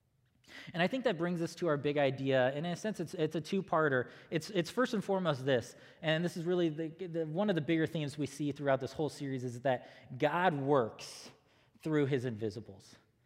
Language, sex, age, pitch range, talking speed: English, male, 20-39, 130-175 Hz, 215 wpm